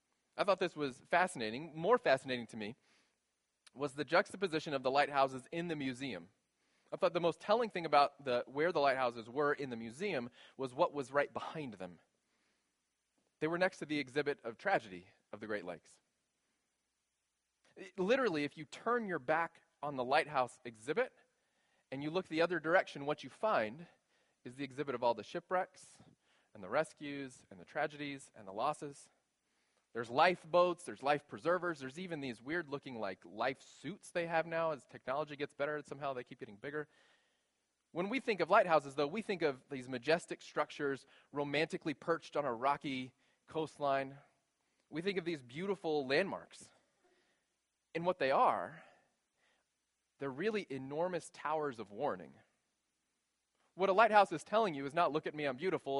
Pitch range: 135-170 Hz